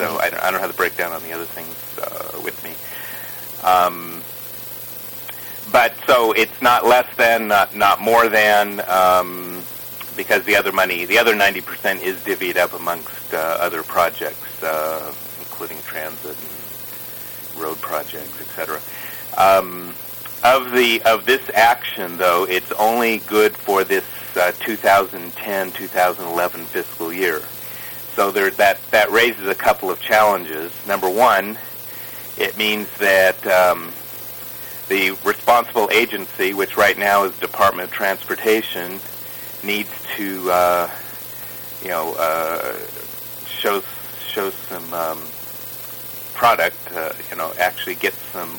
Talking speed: 130 wpm